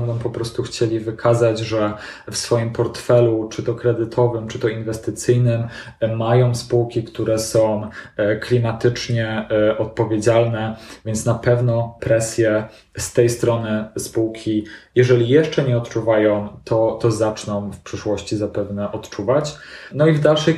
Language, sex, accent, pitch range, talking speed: Polish, male, native, 110-125 Hz, 130 wpm